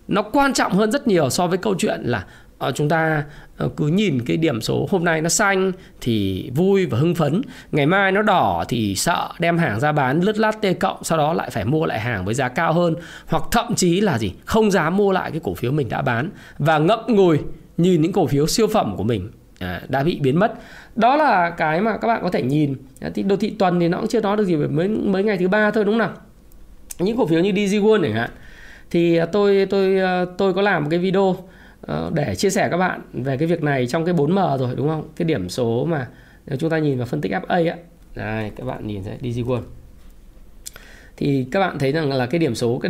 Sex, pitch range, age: male, 140-195 Hz, 20-39